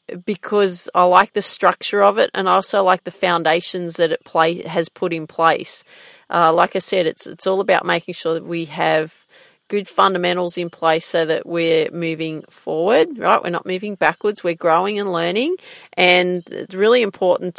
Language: English